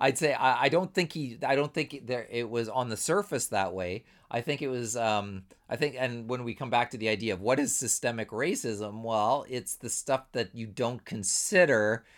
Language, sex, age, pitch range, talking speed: English, male, 40-59, 115-155 Hz, 215 wpm